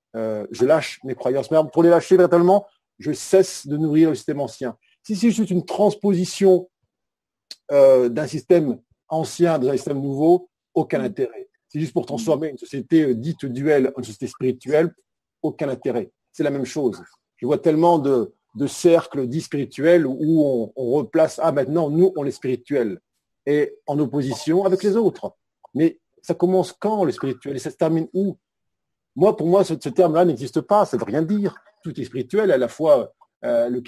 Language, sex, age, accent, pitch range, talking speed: French, male, 50-69, French, 135-185 Hz, 185 wpm